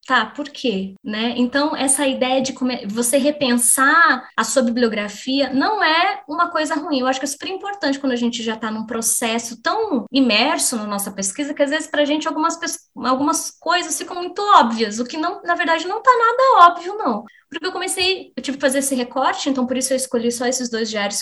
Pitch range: 225-315 Hz